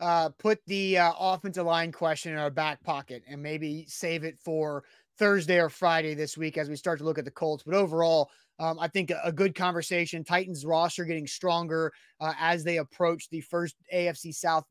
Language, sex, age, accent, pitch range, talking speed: English, male, 30-49, American, 145-180 Hz, 200 wpm